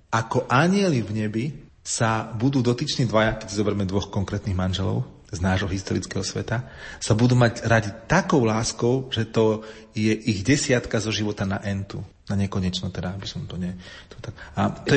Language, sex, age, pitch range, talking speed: Slovak, male, 40-59, 105-125 Hz, 165 wpm